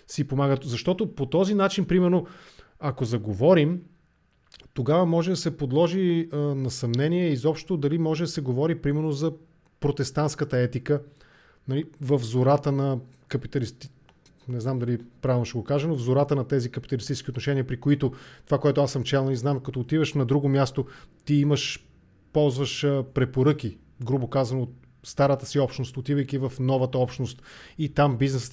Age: 30-49